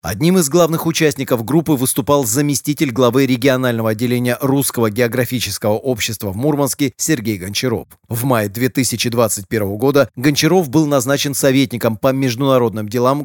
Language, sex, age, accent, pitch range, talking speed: Russian, male, 30-49, native, 115-140 Hz, 125 wpm